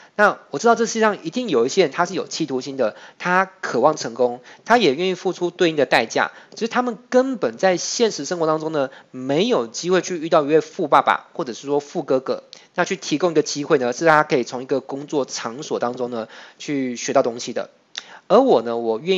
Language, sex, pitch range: Chinese, male, 125-180 Hz